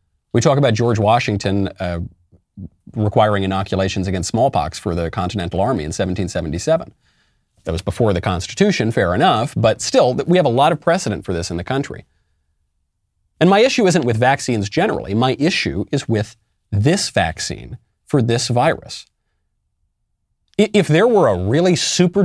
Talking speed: 155 wpm